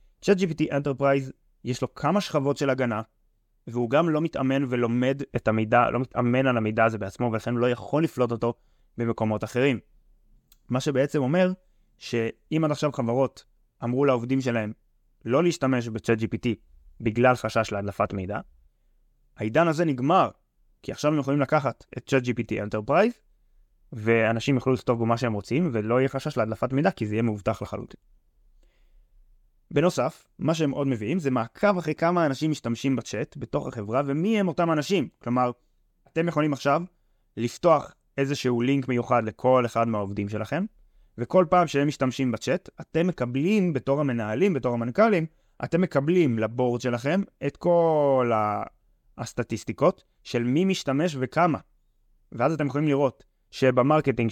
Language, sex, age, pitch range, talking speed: Hebrew, male, 20-39, 115-145 Hz, 145 wpm